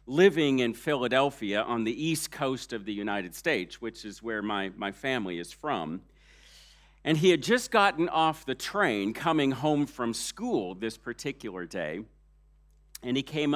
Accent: American